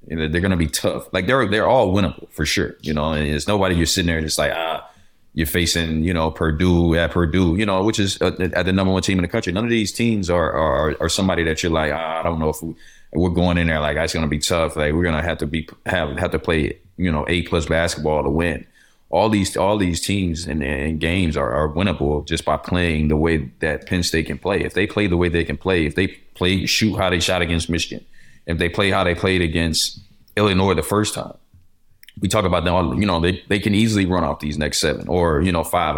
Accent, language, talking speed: American, English, 260 wpm